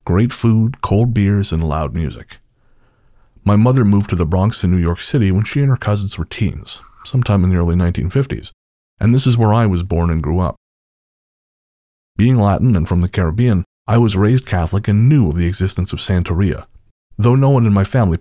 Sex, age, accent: male, 30-49, American